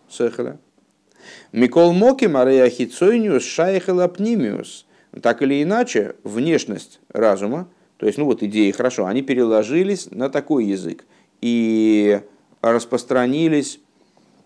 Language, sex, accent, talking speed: Russian, male, native, 95 wpm